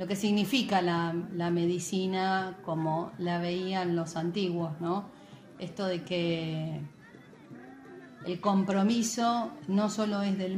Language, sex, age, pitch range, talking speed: Spanish, female, 30-49, 175-215 Hz, 120 wpm